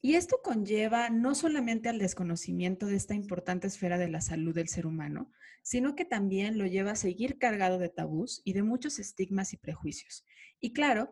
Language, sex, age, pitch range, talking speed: Spanish, female, 30-49, 180-215 Hz, 190 wpm